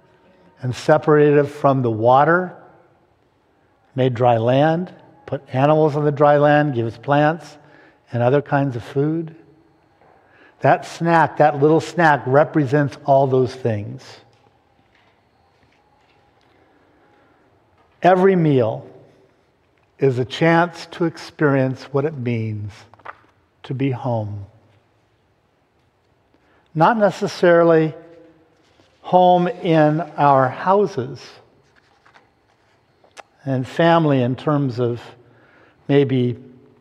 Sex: male